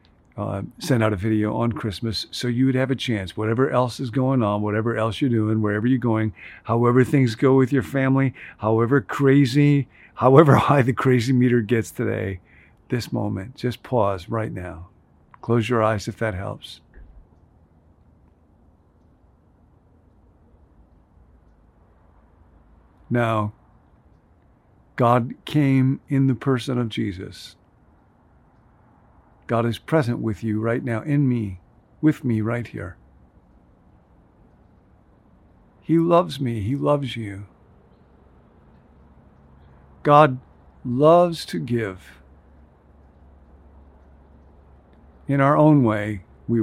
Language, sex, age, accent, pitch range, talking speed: English, male, 50-69, American, 85-125 Hz, 115 wpm